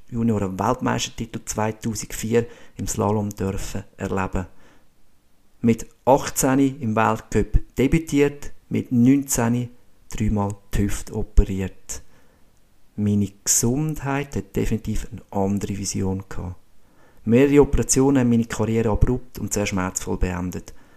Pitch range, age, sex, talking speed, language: 100-120 Hz, 50-69, male, 105 wpm, German